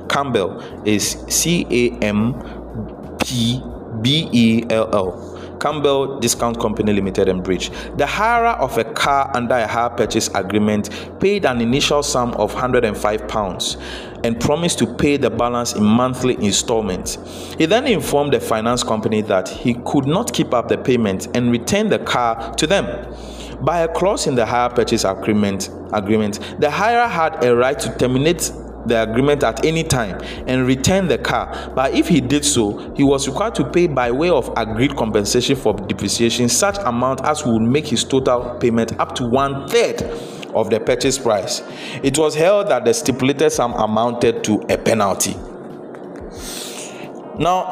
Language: English